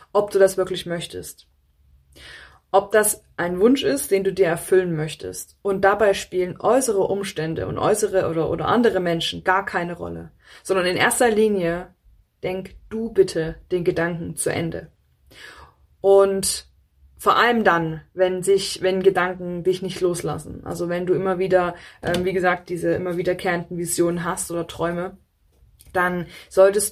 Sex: female